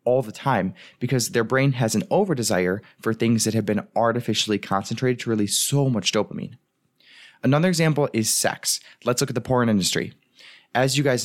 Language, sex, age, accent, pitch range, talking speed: English, male, 20-39, American, 110-140 Hz, 180 wpm